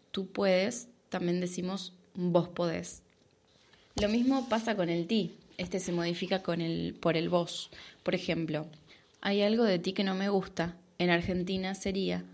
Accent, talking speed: Argentinian, 160 wpm